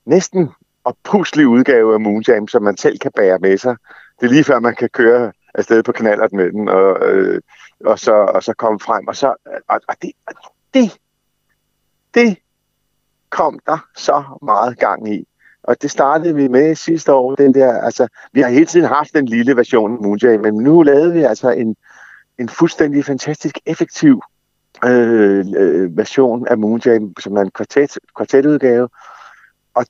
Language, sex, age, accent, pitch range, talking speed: Danish, male, 50-69, native, 105-140 Hz, 170 wpm